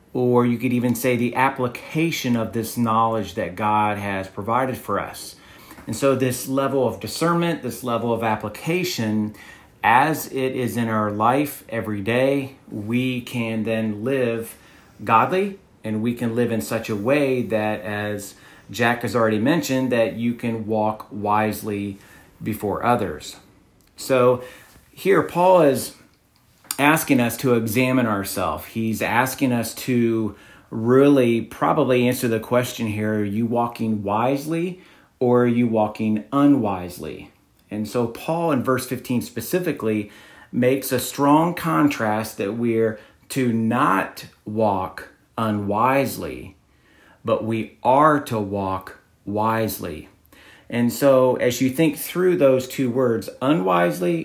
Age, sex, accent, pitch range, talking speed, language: 40-59, male, American, 105-130 Hz, 135 wpm, English